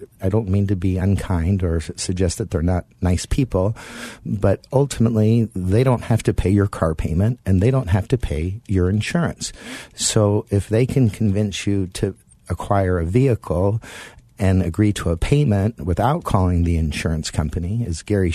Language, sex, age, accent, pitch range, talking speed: English, male, 50-69, American, 90-110 Hz, 175 wpm